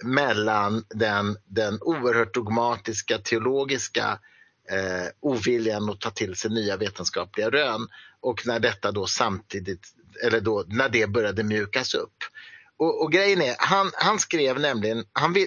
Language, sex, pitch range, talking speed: English, male, 110-175 Hz, 140 wpm